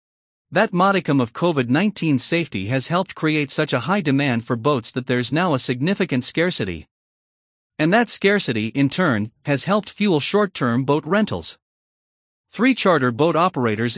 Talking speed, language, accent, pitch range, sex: 150 wpm, English, American, 125-180 Hz, male